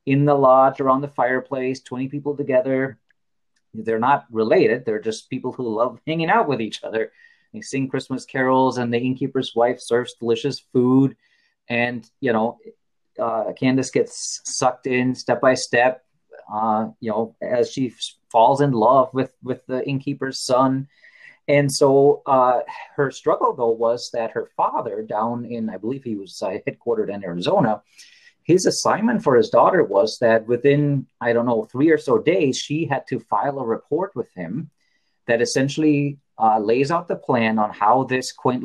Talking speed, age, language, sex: 170 wpm, 30-49, English, male